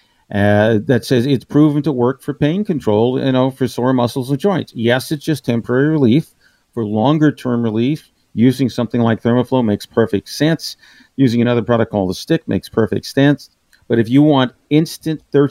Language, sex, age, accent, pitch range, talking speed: English, male, 50-69, American, 105-130 Hz, 180 wpm